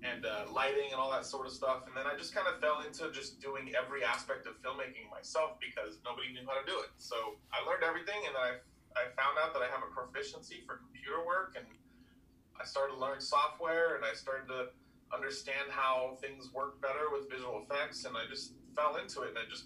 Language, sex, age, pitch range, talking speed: English, male, 30-49, 125-145 Hz, 230 wpm